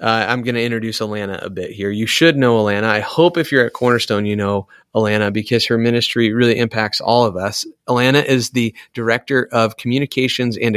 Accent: American